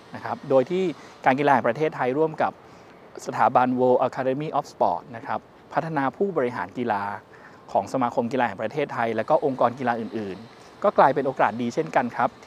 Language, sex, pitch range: Thai, male, 120-145 Hz